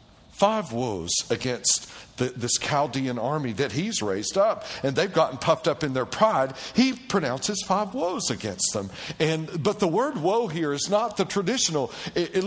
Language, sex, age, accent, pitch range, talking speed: English, male, 60-79, American, 145-230 Hz, 180 wpm